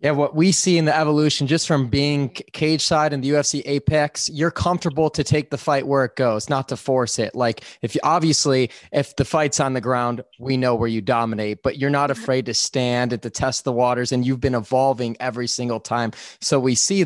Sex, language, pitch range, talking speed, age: male, English, 125-155 Hz, 230 wpm, 20-39